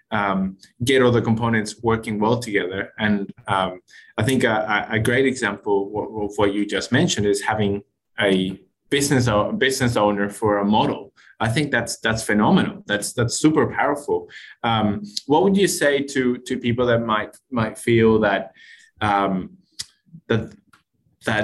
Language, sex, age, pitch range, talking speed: English, male, 20-39, 105-125 Hz, 155 wpm